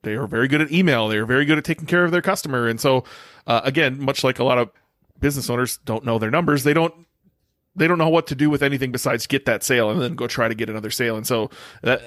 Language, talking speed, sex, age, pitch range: English, 280 wpm, male, 30-49, 125-160 Hz